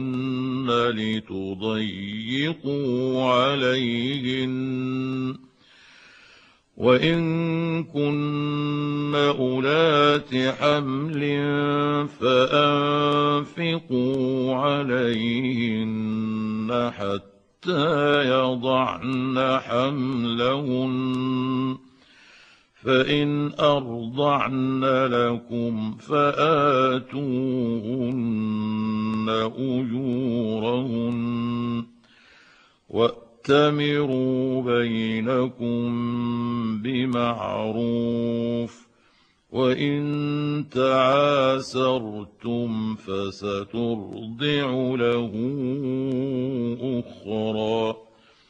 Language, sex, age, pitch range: Arabic, male, 60-79, 115-140 Hz